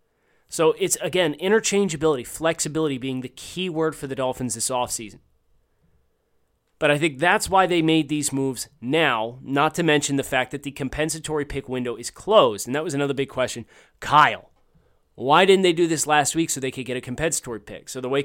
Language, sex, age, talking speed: English, male, 30-49, 195 wpm